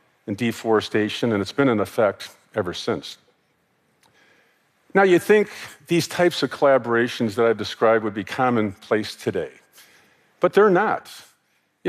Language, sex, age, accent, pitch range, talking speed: Spanish, male, 50-69, American, 115-160 Hz, 135 wpm